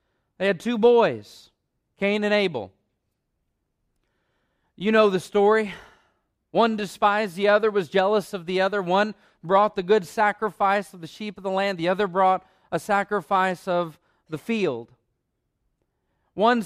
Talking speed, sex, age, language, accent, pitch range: 145 wpm, male, 40-59, English, American, 145-205 Hz